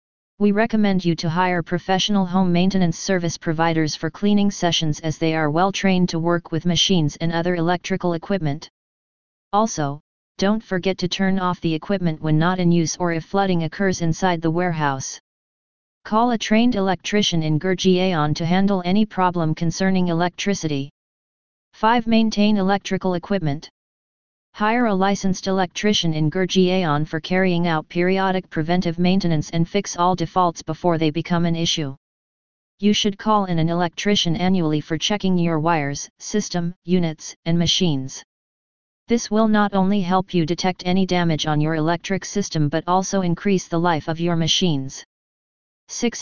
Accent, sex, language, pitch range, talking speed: American, female, English, 165-195 Hz, 155 wpm